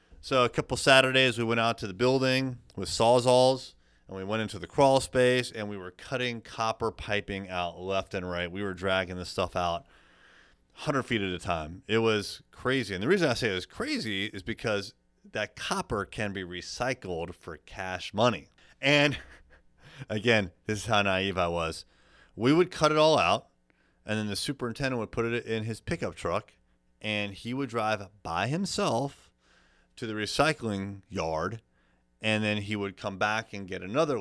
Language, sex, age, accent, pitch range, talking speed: English, male, 30-49, American, 90-125 Hz, 185 wpm